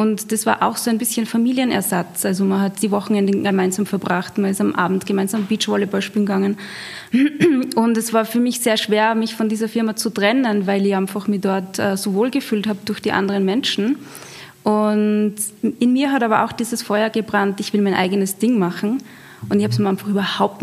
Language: German